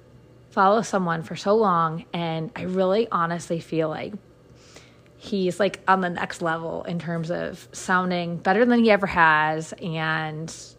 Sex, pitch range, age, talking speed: female, 160-190 Hz, 30-49, 150 wpm